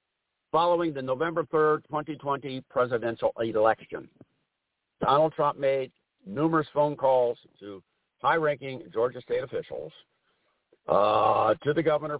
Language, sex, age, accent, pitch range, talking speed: English, male, 60-79, American, 130-165 Hz, 110 wpm